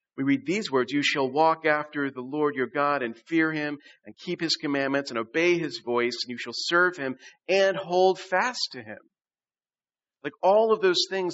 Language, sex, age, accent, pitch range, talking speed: English, male, 40-59, American, 125-165 Hz, 200 wpm